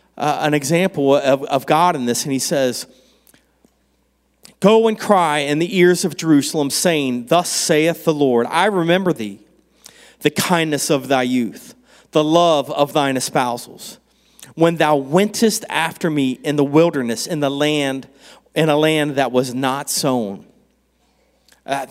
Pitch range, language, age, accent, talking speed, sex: 140-185 Hz, English, 40-59, American, 155 wpm, male